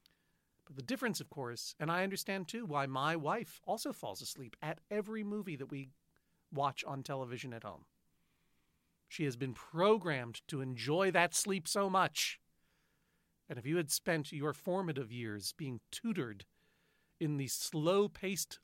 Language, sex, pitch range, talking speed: English, male, 135-180 Hz, 150 wpm